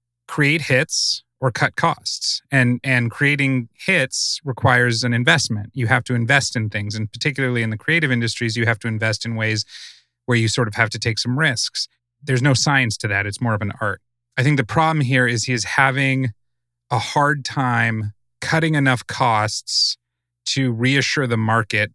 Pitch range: 110-130 Hz